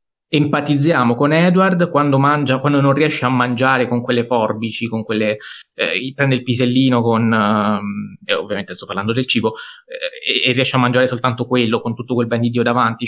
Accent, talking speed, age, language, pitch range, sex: native, 185 wpm, 20-39, Italian, 110-150 Hz, male